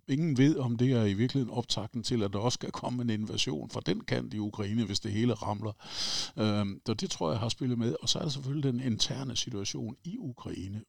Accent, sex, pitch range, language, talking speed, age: native, male, 105-125 Hz, Danish, 235 wpm, 60-79